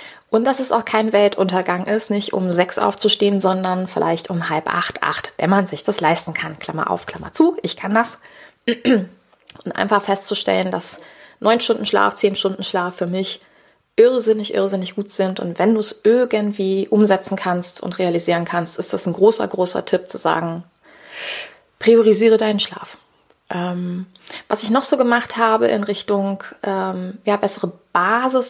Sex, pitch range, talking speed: female, 185-225 Hz, 165 wpm